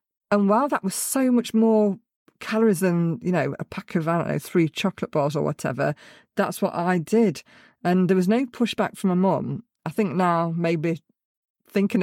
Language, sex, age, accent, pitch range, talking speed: English, female, 40-59, British, 155-210 Hz, 195 wpm